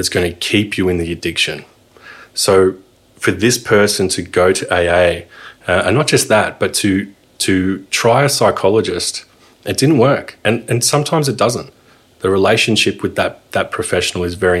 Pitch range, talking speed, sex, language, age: 90-115 Hz, 175 wpm, male, English, 30-49